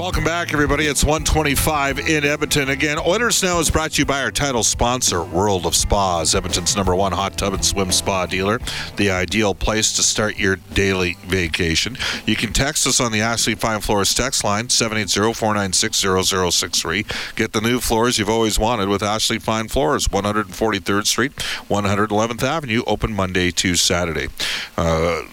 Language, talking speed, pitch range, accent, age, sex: English, 170 wpm, 95-130 Hz, American, 50-69, male